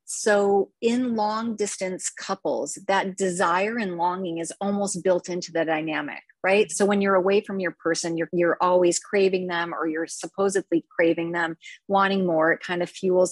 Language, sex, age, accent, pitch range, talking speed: English, female, 30-49, American, 165-200 Hz, 175 wpm